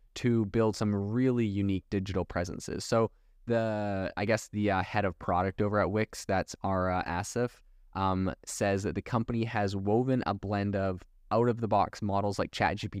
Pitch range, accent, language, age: 95-115 Hz, American, English, 20-39